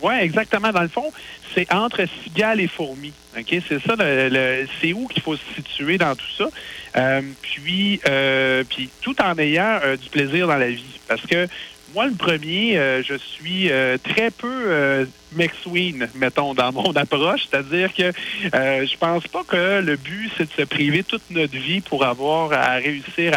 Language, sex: French, male